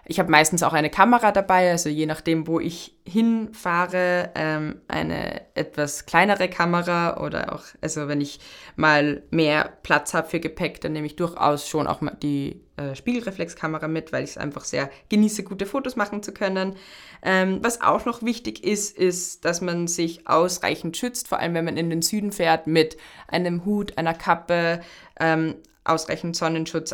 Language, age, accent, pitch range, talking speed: German, 20-39, German, 155-185 Hz, 175 wpm